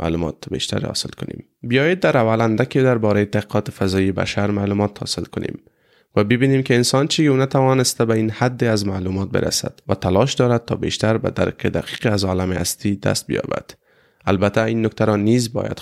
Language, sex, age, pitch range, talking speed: Persian, male, 20-39, 100-130 Hz, 180 wpm